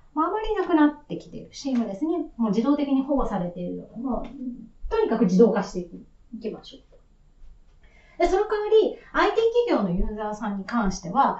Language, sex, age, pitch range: Japanese, female, 30-49, 195-280 Hz